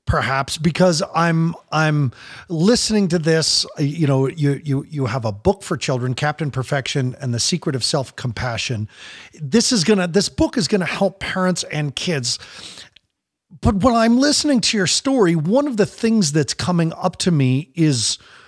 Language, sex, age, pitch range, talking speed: English, male, 40-59, 135-195 Hz, 175 wpm